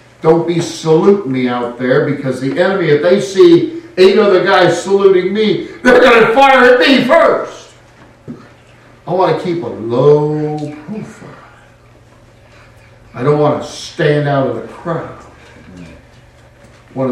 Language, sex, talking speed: English, male, 145 wpm